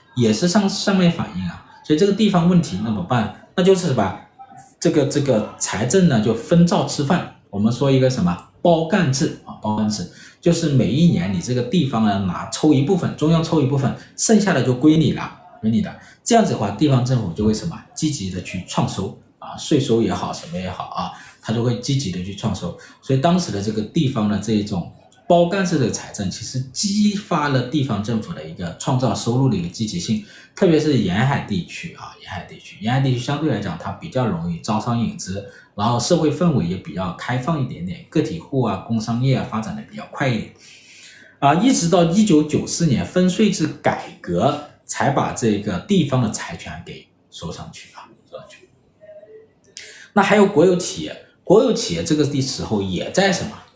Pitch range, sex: 110-175 Hz, male